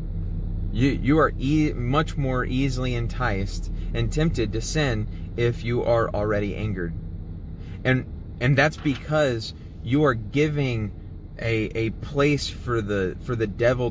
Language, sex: English, male